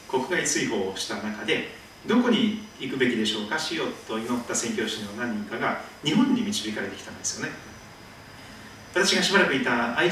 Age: 40-59